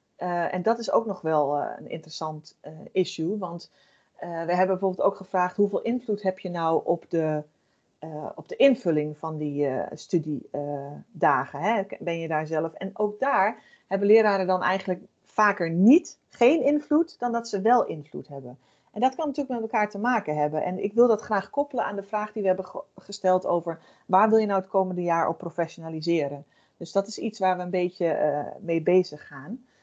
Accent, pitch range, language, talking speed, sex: Dutch, 170-225 Hz, Dutch, 195 wpm, female